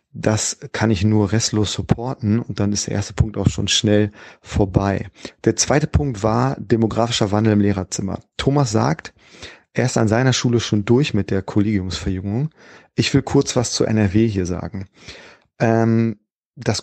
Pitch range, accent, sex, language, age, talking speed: 105-135 Hz, German, male, German, 30-49, 160 wpm